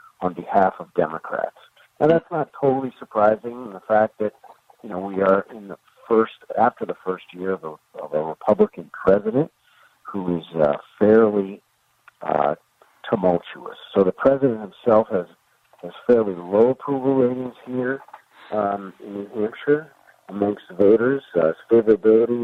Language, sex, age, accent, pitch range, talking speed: English, male, 50-69, American, 90-120 Hz, 145 wpm